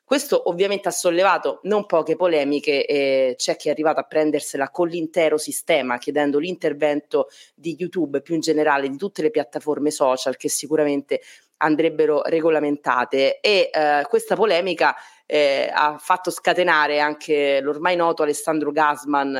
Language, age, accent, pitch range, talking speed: Italian, 30-49, native, 145-180 Hz, 145 wpm